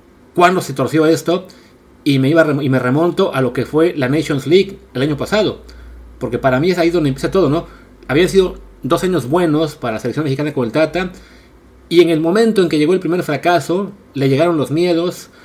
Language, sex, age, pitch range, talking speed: Spanish, male, 30-49, 125-165 Hz, 215 wpm